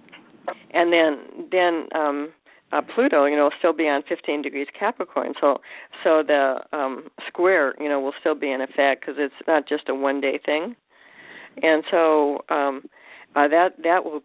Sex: female